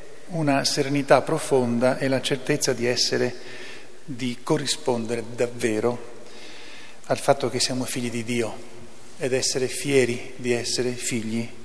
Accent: native